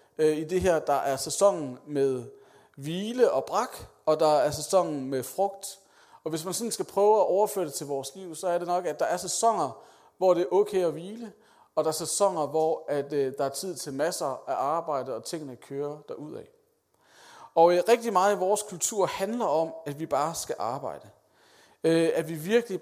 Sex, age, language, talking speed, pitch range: male, 40-59, Danish, 195 wpm, 150-195 Hz